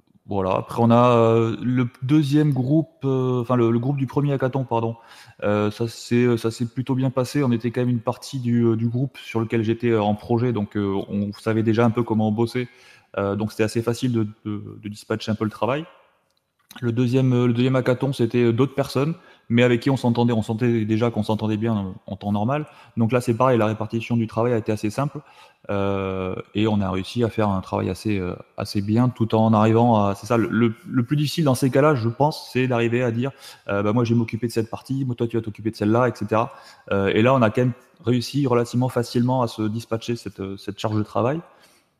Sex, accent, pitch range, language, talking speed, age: male, French, 110-125 Hz, French, 225 wpm, 20-39